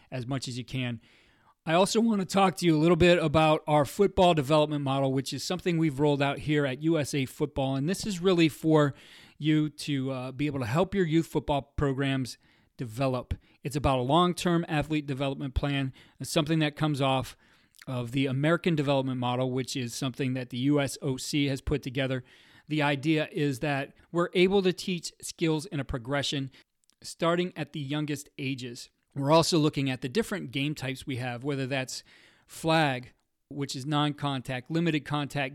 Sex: male